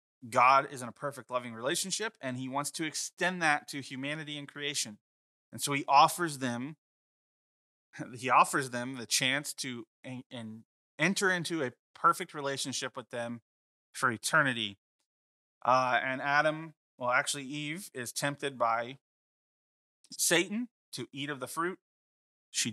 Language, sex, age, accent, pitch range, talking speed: English, male, 30-49, American, 120-155 Hz, 145 wpm